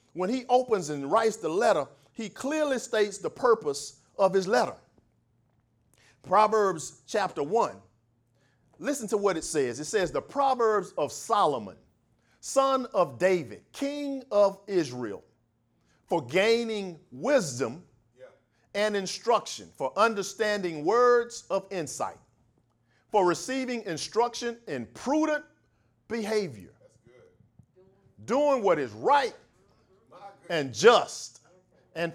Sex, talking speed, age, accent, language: male, 110 wpm, 50-69, American, English